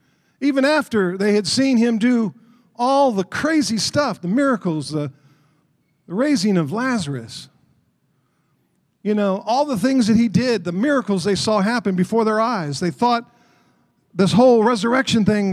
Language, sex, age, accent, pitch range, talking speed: English, male, 50-69, American, 175-255 Hz, 155 wpm